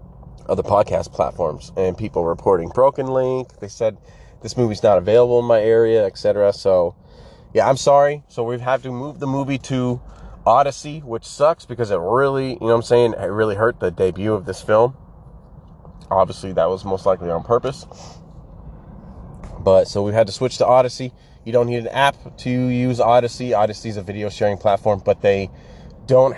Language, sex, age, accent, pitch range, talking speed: English, male, 30-49, American, 95-125 Hz, 185 wpm